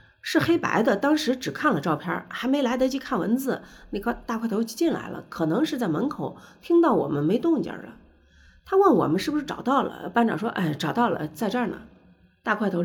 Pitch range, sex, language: 185-285 Hz, female, Chinese